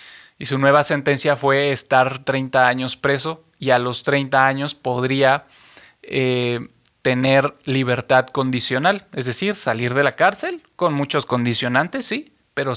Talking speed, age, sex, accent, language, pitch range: 140 wpm, 30-49, male, Mexican, Spanish, 125-150 Hz